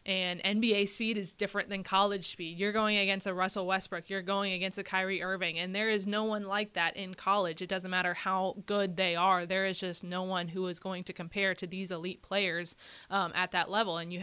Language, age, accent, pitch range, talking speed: English, 20-39, American, 180-200 Hz, 235 wpm